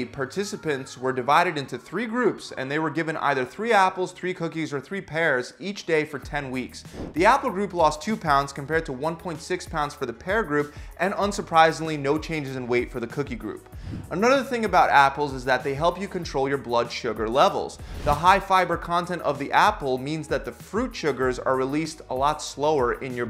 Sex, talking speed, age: male, 205 wpm, 30-49